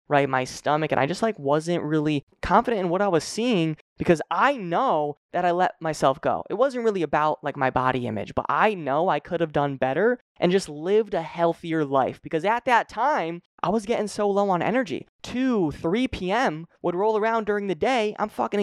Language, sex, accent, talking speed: English, male, American, 215 wpm